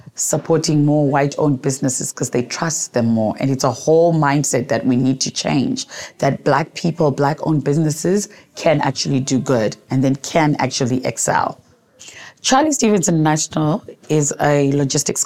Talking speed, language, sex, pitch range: 160 wpm, English, female, 135-160 Hz